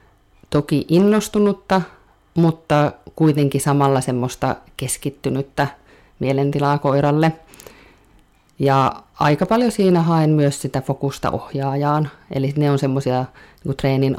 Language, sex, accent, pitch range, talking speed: Finnish, female, native, 130-155 Hz, 100 wpm